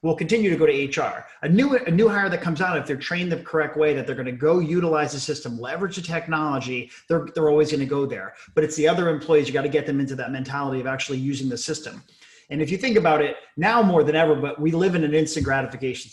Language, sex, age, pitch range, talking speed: English, male, 30-49, 140-170 Hz, 255 wpm